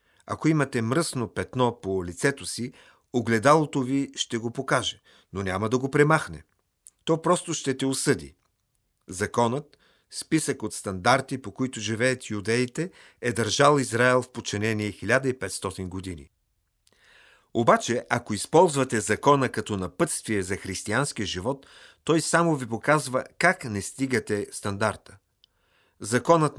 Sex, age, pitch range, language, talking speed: male, 50-69, 105-140 Hz, Bulgarian, 125 wpm